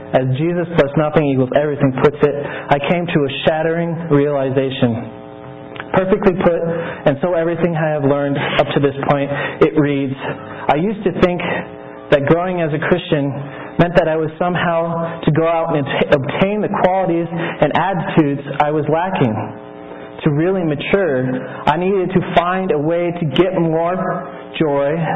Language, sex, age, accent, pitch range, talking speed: English, male, 30-49, American, 140-180 Hz, 160 wpm